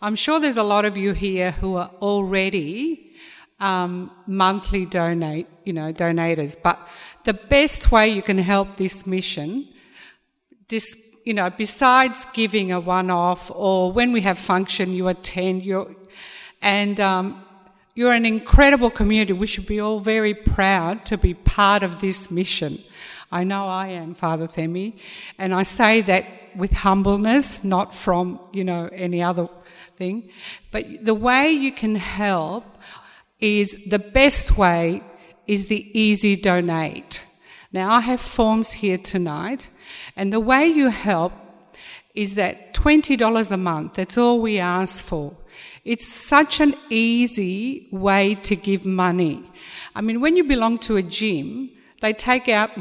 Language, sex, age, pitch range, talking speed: English, female, 50-69, 185-225 Hz, 150 wpm